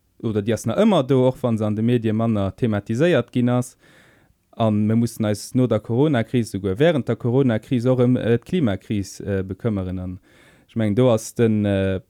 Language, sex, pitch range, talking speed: German, male, 105-130 Hz, 190 wpm